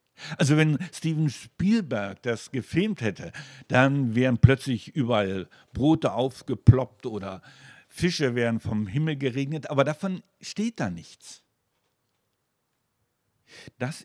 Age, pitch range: 60-79, 125-170 Hz